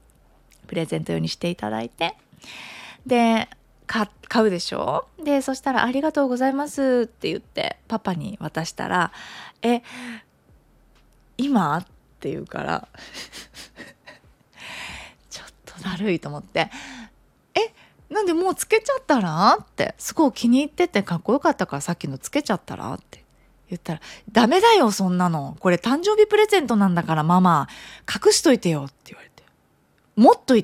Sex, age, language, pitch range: female, 20-39, Japanese, 165-245 Hz